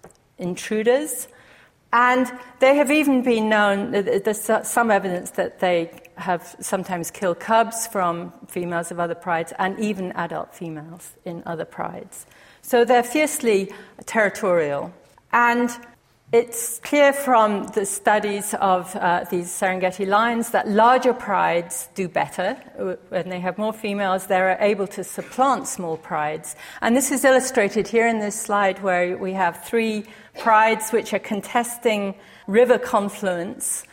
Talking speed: 135 wpm